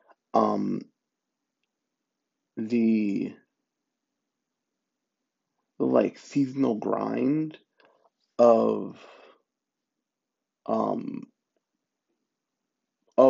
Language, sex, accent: English, male, American